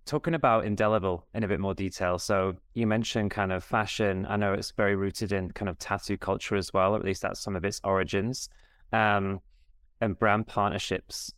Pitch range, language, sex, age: 90-105 Hz, English, male, 20-39